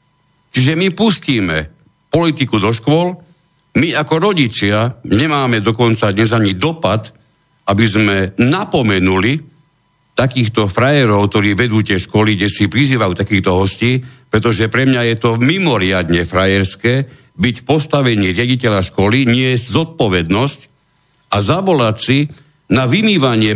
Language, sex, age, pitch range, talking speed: Slovak, male, 60-79, 95-130 Hz, 120 wpm